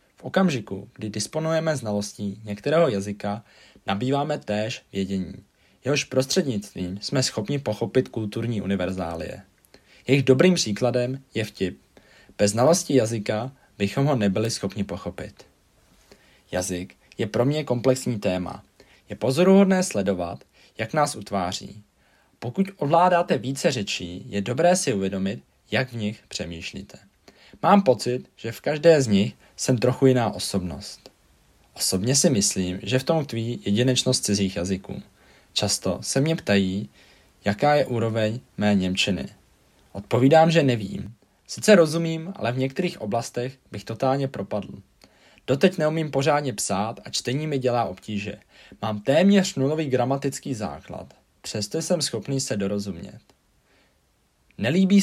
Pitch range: 100-135 Hz